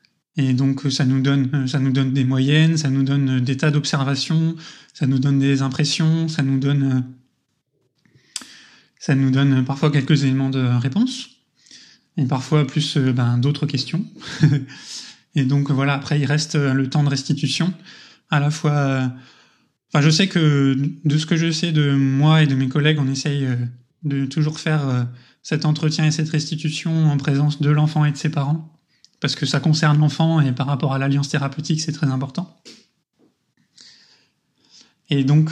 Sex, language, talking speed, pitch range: male, French, 170 wpm, 135-155 Hz